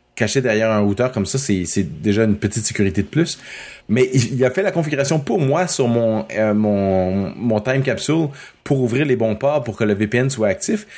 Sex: male